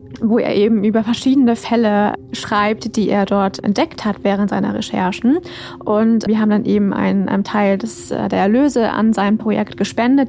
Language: German